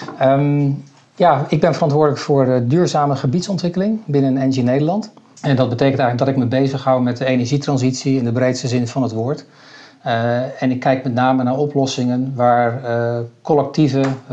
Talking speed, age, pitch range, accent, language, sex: 170 wpm, 50-69, 120-140 Hz, Dutch, English, male